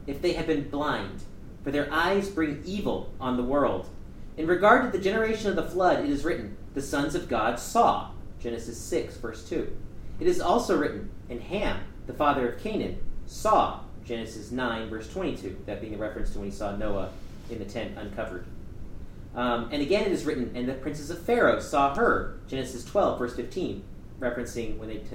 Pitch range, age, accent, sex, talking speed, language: 110-180 Hz, 40-59, American, male, 195 wpm, English